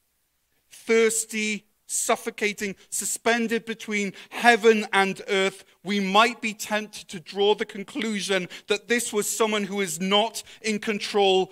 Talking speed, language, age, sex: 125 wpm, English, 40-59, male